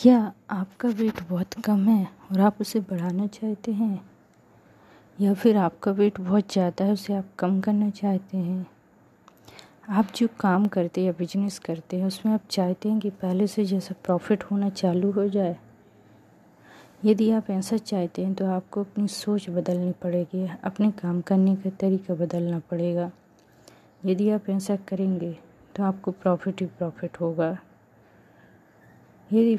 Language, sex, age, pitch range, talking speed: Hindi, female, 20-39, 180-205 Hz, 155 wpm